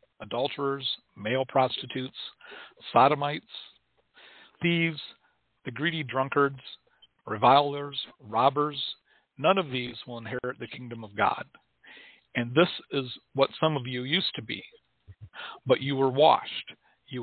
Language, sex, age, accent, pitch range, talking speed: English, male, 50-69, American, 120-145 Hz, 120 wpm